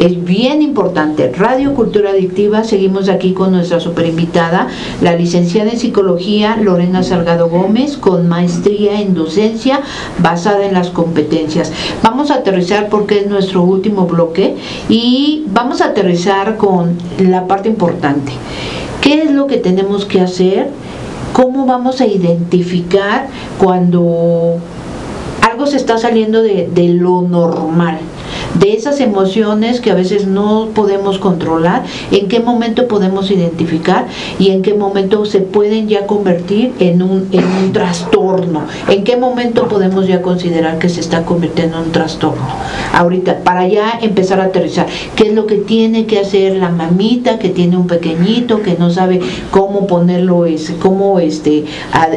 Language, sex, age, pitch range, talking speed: Spanish, female, 50-69, 175-210 Hz, 150 wpm